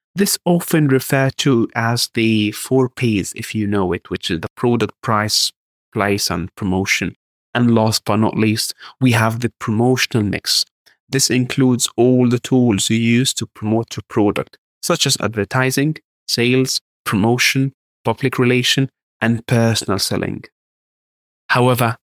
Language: English